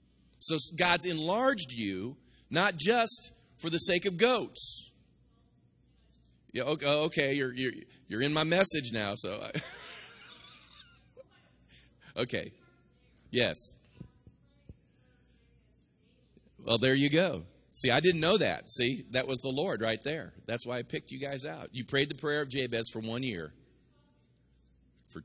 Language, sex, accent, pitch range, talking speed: English, male, American, 105-175 Hz, 140 wpm